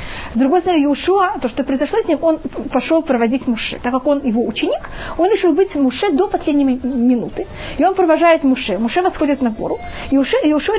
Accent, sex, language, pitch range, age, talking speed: native, female, Russian, 250-335 Hz, 20-39, 205 wpm